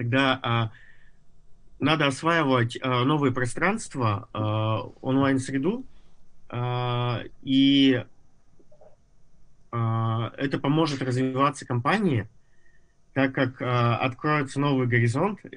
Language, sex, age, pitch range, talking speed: Russian, male, 20-39, 115-135 Hz, 60 wpm